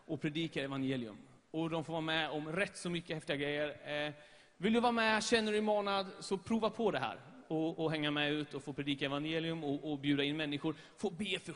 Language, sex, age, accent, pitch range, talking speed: English, male, 30-49, Swedish, 145-200 Hz, 235 wpm